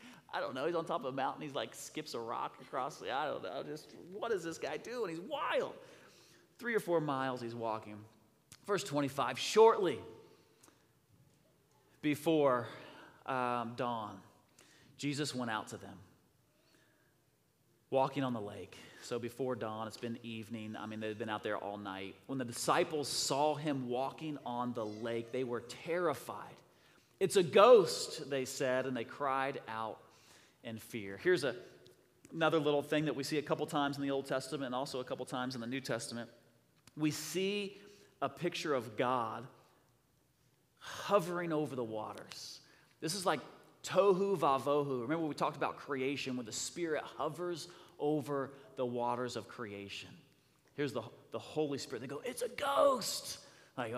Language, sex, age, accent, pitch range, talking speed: English, male, 30-49, American, 125-160 Hz, 165 wpm